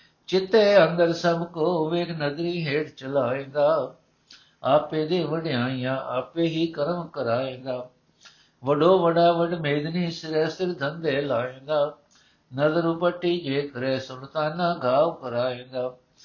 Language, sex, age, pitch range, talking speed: Punjabi, male, 60-79, 130-170 Hz, 105 wpm